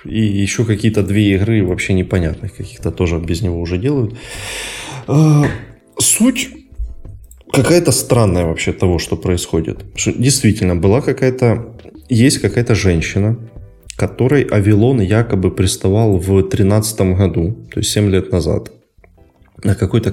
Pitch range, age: 95-115 Hz, 20-39